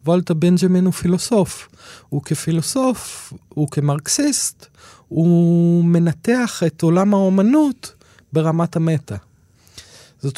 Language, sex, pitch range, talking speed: Hebrew, male, 145-185 Hz, 95 wpm